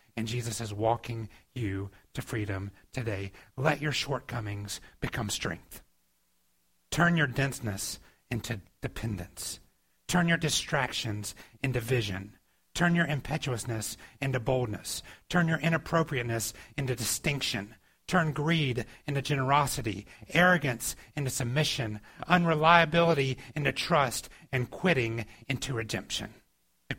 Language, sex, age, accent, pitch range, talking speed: English, male, 40-59, American, 105-145 Hz, 105 wpm